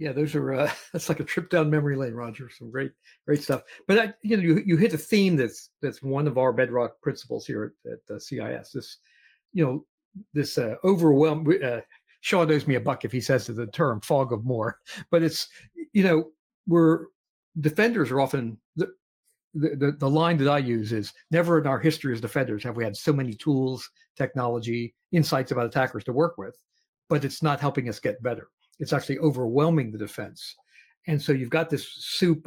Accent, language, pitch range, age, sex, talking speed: American, English, 125-165 Hz, 60-79, male, 205 wpm